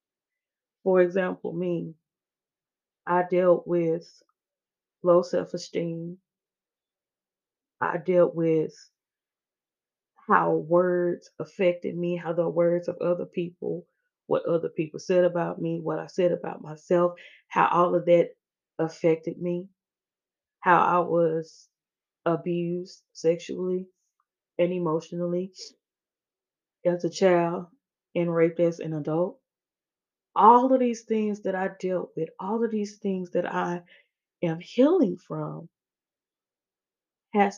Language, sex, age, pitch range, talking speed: English, female, 20-39, 170-185 Hz, 115 wpm